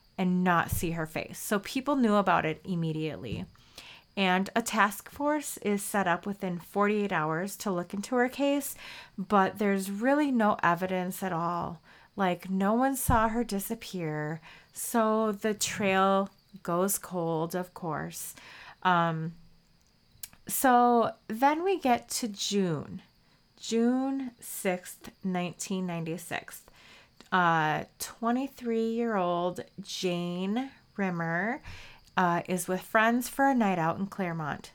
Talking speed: 125 wpm